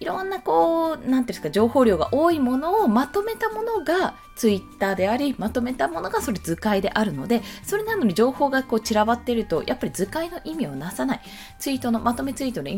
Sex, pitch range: female, 185-275 Hz